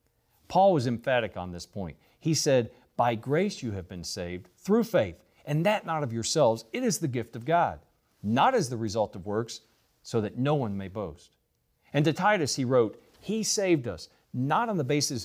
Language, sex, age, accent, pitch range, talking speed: English, male, 40-59, American, 115-165 Hz, 200 wpm